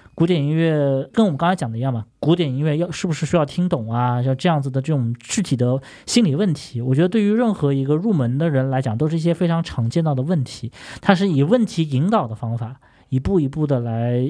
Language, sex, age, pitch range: Chinese, male, 20-39, 130-180 Hz